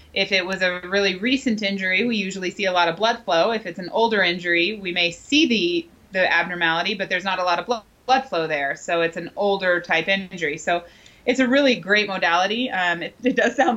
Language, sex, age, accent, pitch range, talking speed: English, female, 20-39, American, 175-215 Hz, 230 wpm